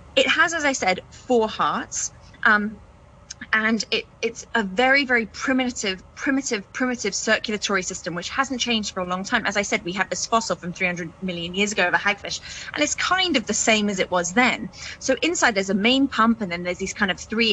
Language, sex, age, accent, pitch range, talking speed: English, female, 20-39, British, 200-255 Hz, 215 wpm